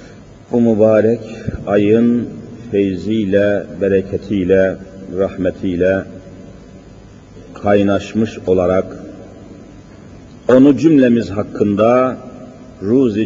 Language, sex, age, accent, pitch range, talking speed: Turkish, male, 50-69, native, 95-125 Hz, 55 wpm